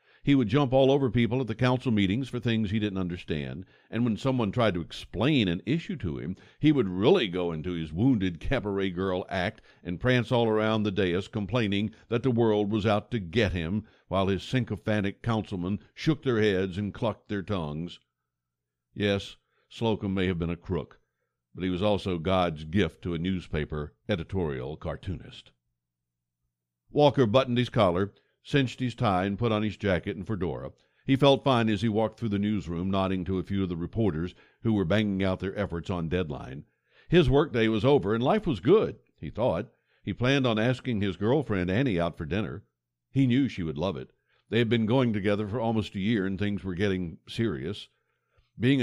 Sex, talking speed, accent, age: male, 195 wpm, American, 60-79